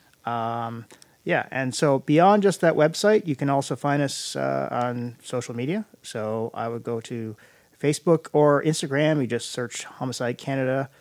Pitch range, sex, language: 130-165 Hz, male, English